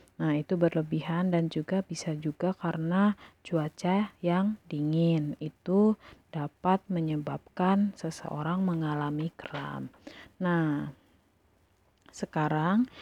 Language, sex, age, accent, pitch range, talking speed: Indonesian, female, 30-49, native, 160-185 Hz, 90 wpm